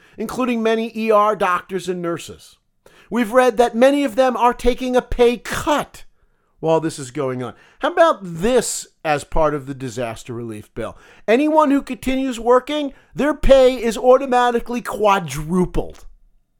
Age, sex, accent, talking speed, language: 40-59, male, American, 150 wpm, English